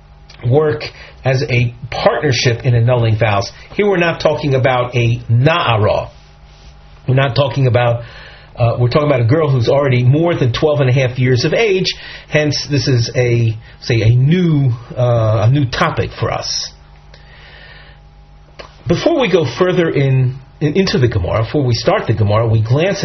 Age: 40-59